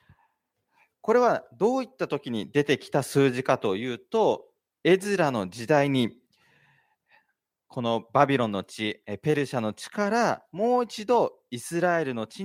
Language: Japanese